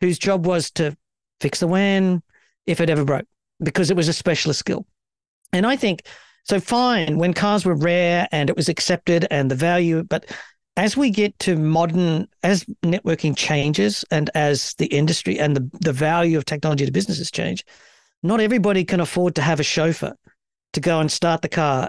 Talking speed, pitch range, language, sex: 190 wpm, 150-180 Hz, English, male